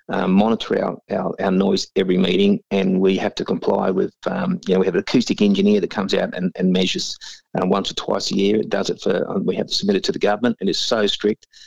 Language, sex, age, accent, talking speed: English, male, 30-49, Australian, 255 wpm